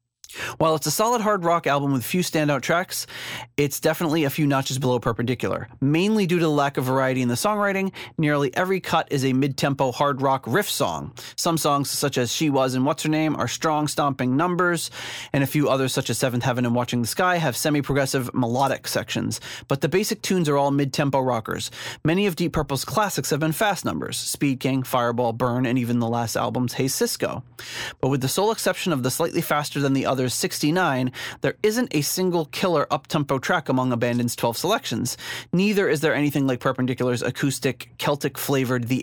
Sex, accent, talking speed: male, American, 195 wpm